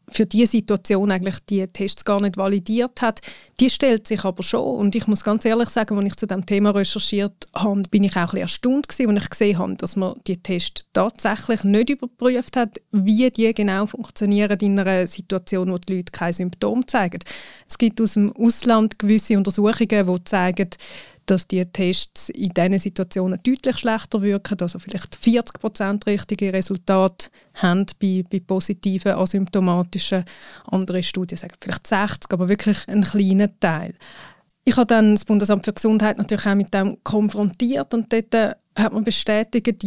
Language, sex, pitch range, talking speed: German, female, 195-220 Hz, 175 wpm